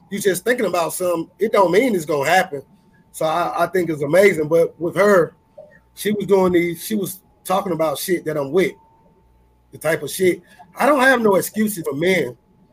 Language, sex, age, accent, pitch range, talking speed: English, male, 30-49, American, 165-205 Hz, 205 wpm